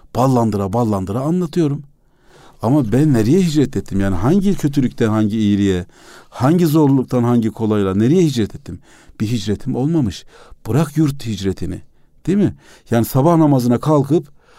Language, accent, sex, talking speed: Turkish, native, male, 130 wpm